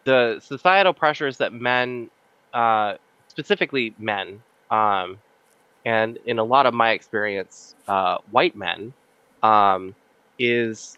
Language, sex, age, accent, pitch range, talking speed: English, male, 20-39, American, 120-165 Hz, 115 wpm